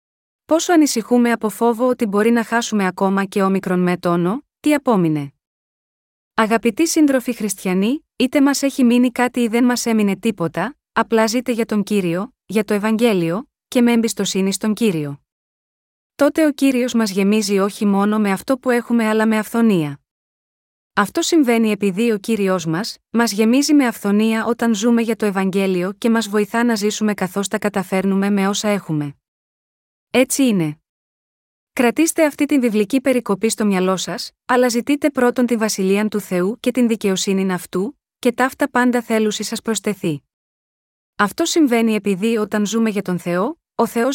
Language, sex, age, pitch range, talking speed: Greek, female, 20-39, 195-245 Hz, 160 wpm